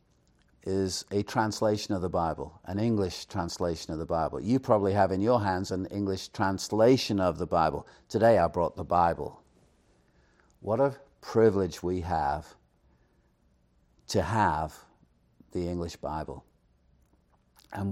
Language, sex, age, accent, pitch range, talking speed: English, male, 50-69, British, 70-105 Hz, 135 wpm